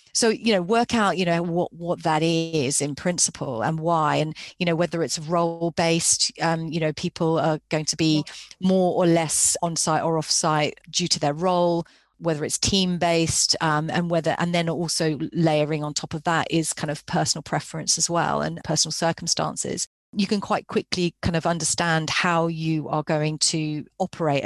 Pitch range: 155-185 Hz